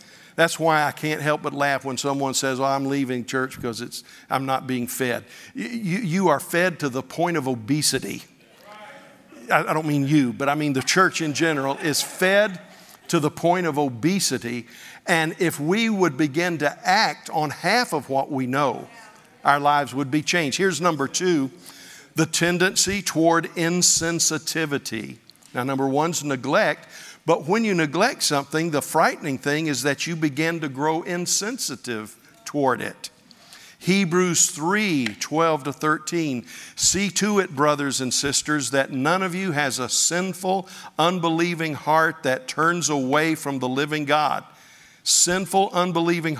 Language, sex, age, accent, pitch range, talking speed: English, male, 50-69, American, 140-180 Hz, 160 wpm